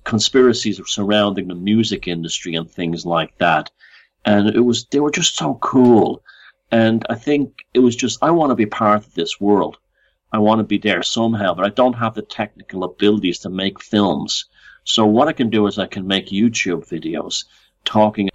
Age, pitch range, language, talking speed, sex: 50-69, 95-115 Hz, English, 195 wpm, male